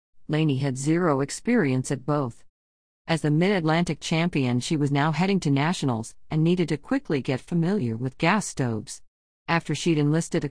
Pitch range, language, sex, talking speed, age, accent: 140-180 Hz, English, female, 165 wpm, 50-69, American